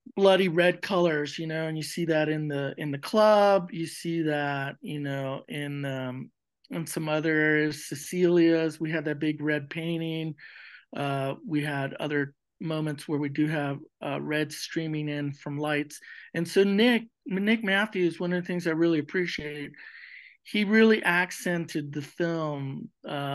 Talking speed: 165 wpm